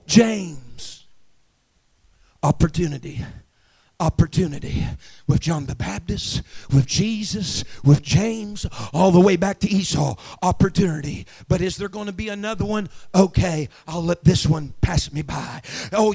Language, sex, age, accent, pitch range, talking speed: English, male, 40-59, American, 170-260 Hz, 125 wpm